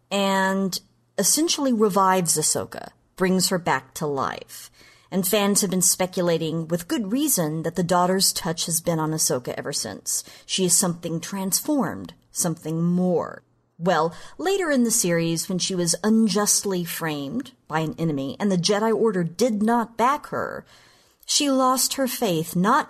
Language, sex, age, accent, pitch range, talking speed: English, female, 40-59, American, 165-220 Hz, 155 wpm